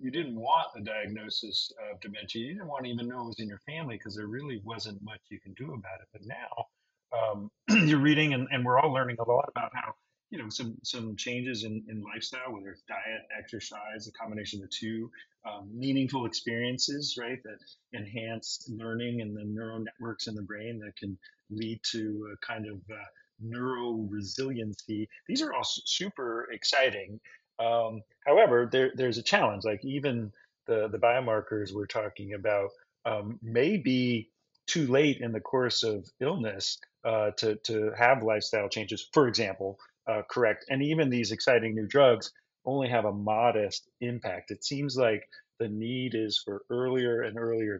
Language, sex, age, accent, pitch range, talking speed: English, male, 30-49, American, 105-125 Hz, 180 wpm